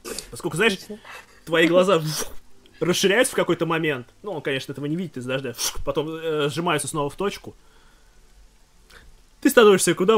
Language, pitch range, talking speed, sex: Russian, 100-150 Hz, 160 wpm, male